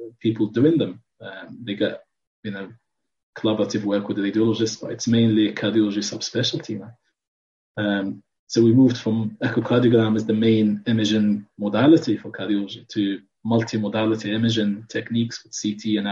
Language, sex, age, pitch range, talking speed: English, male, 20-39, 105-115 Hz, 145 wpm